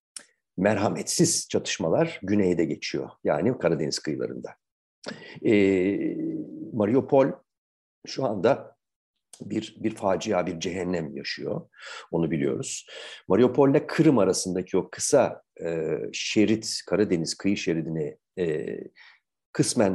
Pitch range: 95-130 Hz